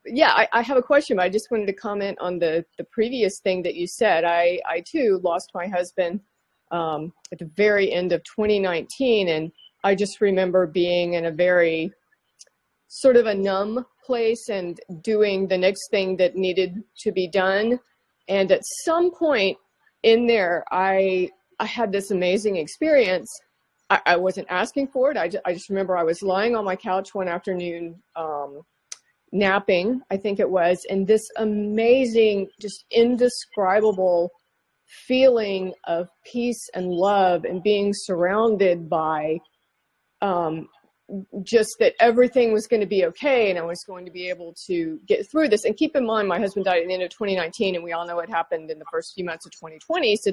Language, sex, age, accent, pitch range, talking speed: English, female, 30-49, American, 180-225 Hz, 180 wpm